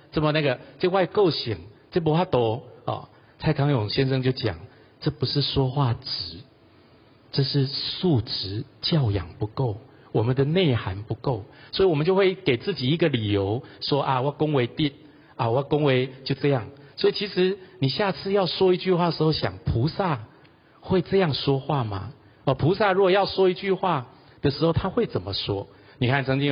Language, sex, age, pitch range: Chinese, male, 50-69, 125-170 Hz